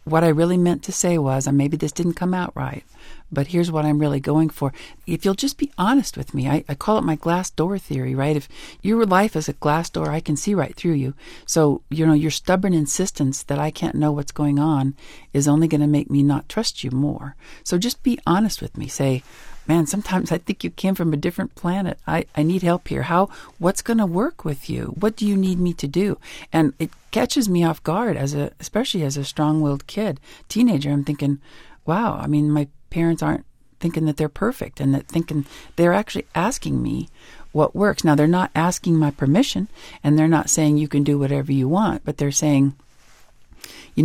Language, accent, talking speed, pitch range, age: English, American, 225 wpm, 145-180 Hz, 50-69